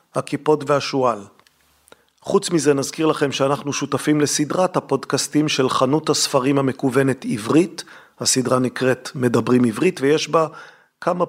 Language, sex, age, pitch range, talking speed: Hebrew, male, 40-59, 135-160 Hz, 115 wpm